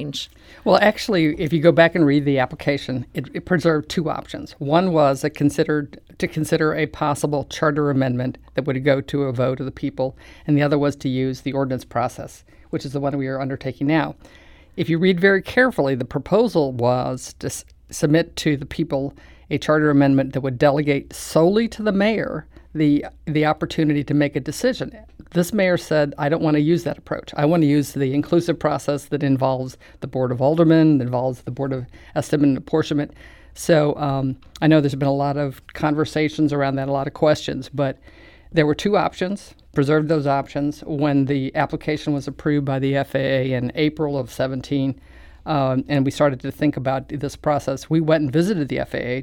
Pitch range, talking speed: 135-155 Hz, 200 wpm